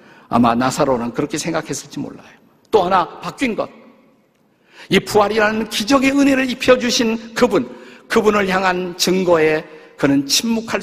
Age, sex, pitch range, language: 50-69, male, 155-240 Hz, Korean